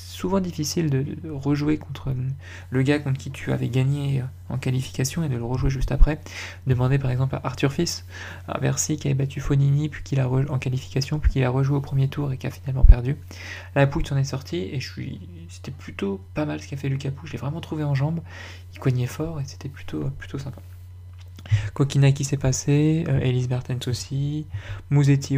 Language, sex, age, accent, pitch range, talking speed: French, male, 20-39, French, 105-140 Hz, 215 wpm